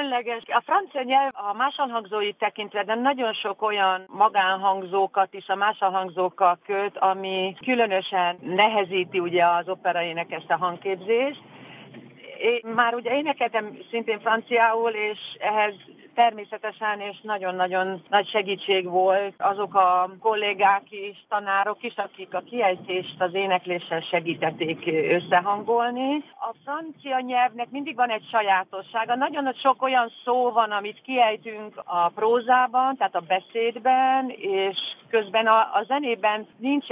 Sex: female